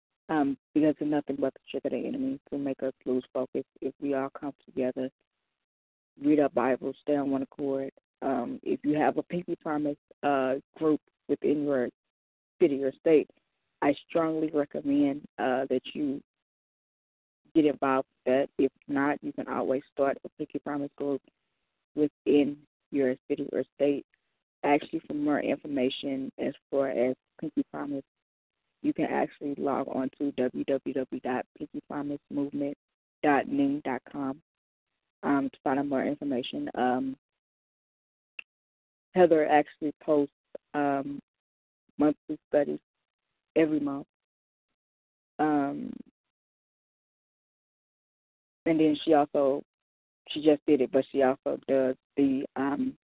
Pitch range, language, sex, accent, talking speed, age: 135-150 Hz, English, female, American, 125 wpm, 20-39